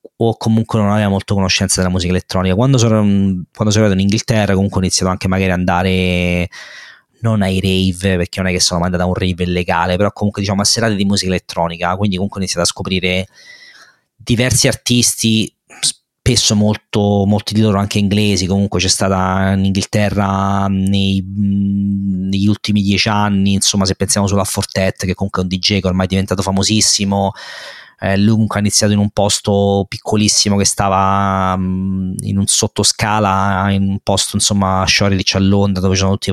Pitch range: 95-105 Hz